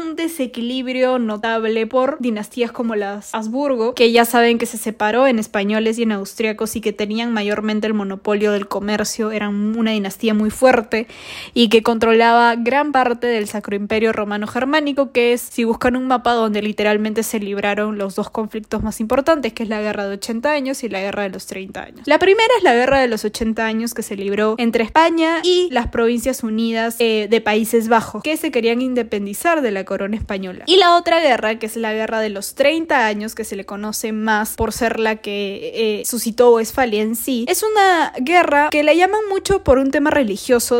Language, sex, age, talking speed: Spanish, female, 20-39, 205 wpm